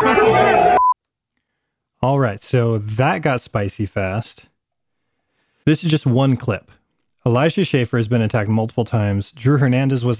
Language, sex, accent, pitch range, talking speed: English, male, American, 110-130 Hz, 130 wpm